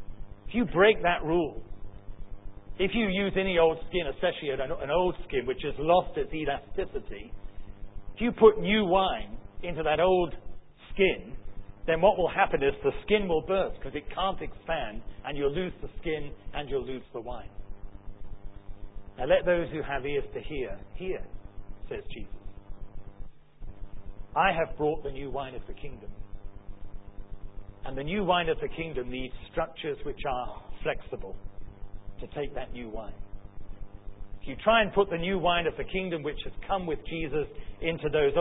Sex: male